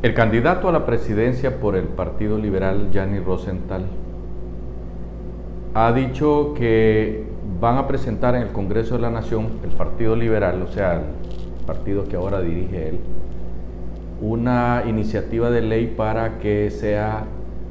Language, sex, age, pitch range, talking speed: Spanish, male, 50-69, 85-110 Hz, 140 wpm